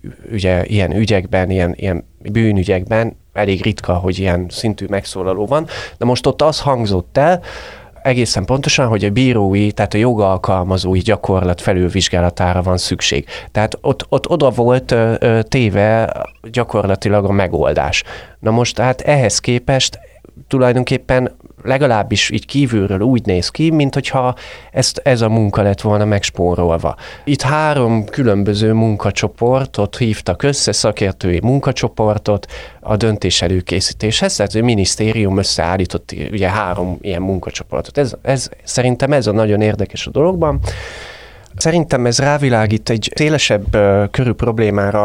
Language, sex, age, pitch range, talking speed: Hungarian, male, 30-49, 95-120 Hz, 130 wpm